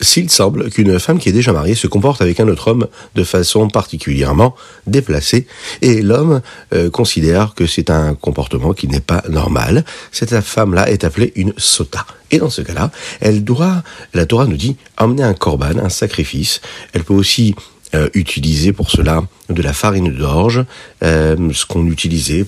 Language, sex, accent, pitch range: French, male, French, 80-105 Hz